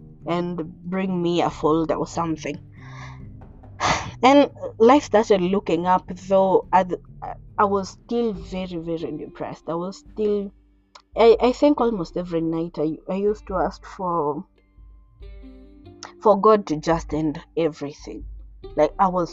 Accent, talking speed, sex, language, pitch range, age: South African, 145 wpm, female, English, 155-205 Hz, 20-39